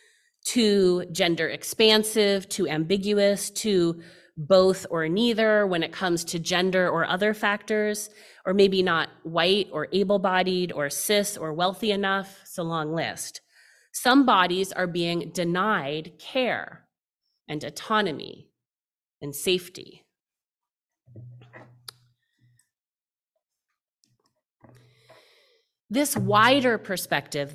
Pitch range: 170-215 Hz